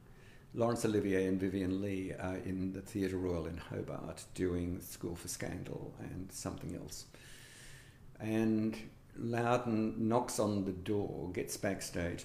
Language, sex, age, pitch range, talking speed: English, male, 50-69, 95-115 Hz, 130 wpm